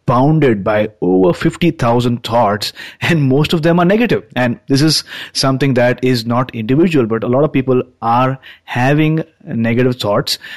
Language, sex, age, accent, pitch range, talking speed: English, male, 30-49, Indian, 115-145 Hz, 160 wpm